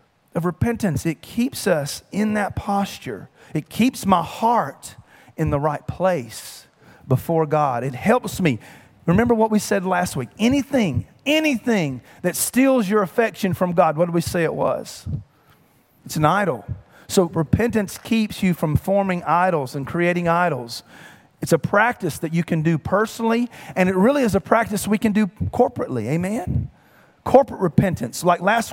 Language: English